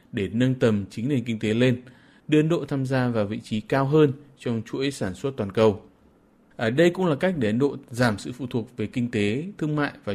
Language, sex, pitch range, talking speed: Vietnamese, male, 110-150 Hz, 250 wpm